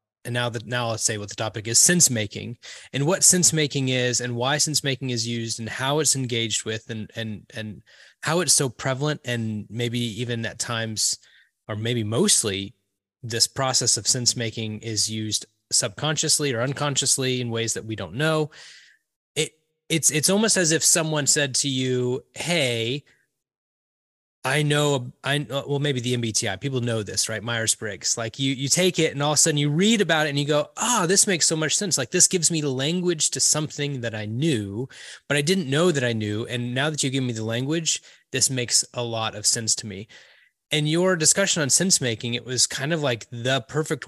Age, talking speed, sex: 20-39, 205 wpm, male